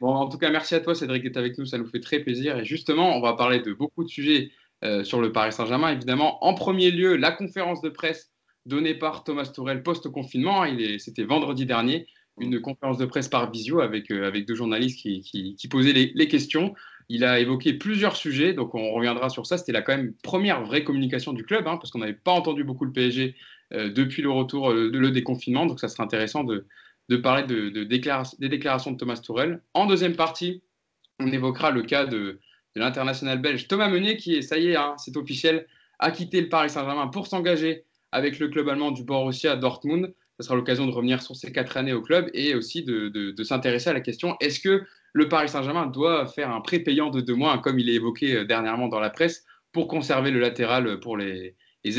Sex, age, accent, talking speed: male, 20-39, French, 225 wpm